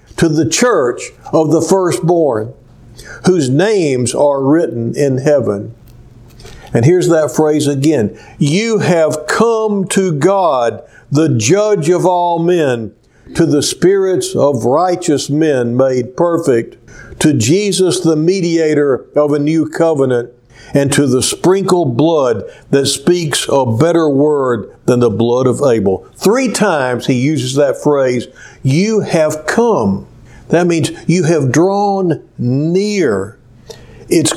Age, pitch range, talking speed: 60-79, 125-185 Hz, 130 wpm